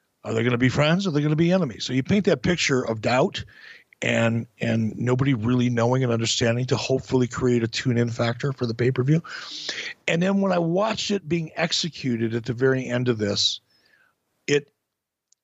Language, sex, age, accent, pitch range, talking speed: English, male, 60-79, American, 120-160 Hz, 200 wpm